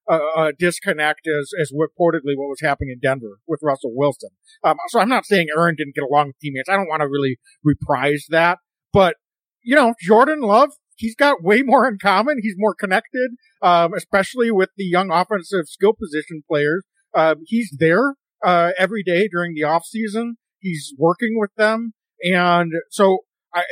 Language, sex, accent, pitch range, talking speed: English, male, American, 150-195 Hz, 175 wpm